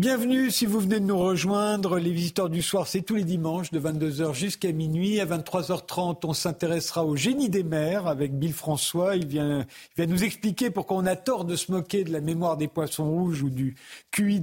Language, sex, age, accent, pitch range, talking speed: French, male, 50-69, French, 165-205 Hz, 215 wpm